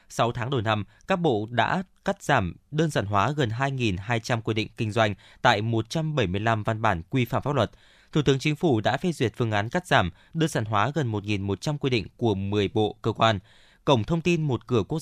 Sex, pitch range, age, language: male, 105-140 Hz, 20-39, Vietnamese